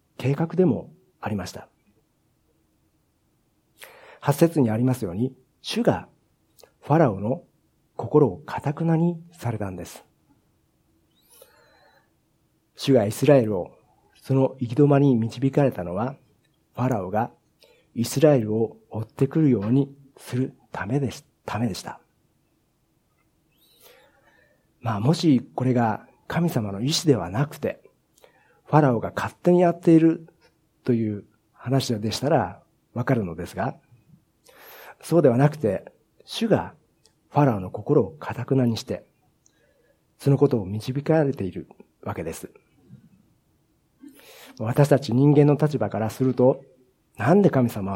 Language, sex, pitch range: Japanese, male, 115-150 Hz